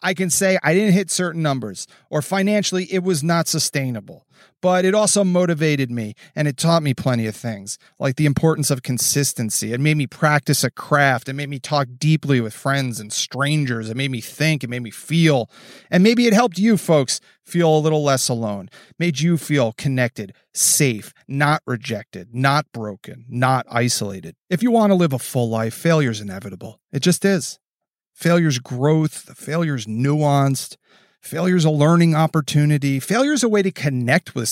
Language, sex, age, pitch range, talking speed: English, male, 30-49, 125-180 Hz, 180 wpm